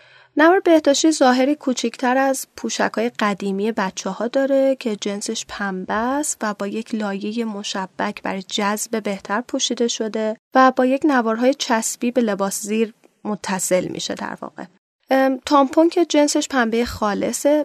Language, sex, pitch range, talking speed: Persian, female, 210-275 Hz, 140 wpm